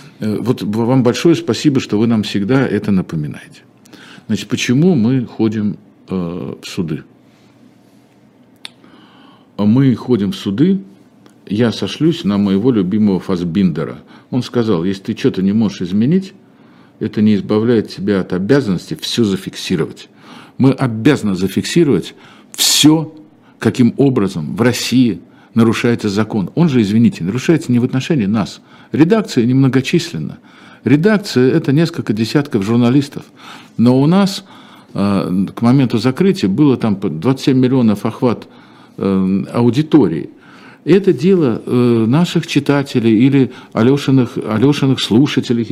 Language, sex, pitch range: Russian, male, 110-150 Hz